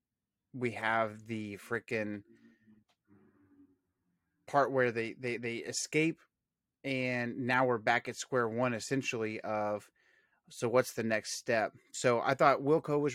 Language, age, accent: English, 30-49, American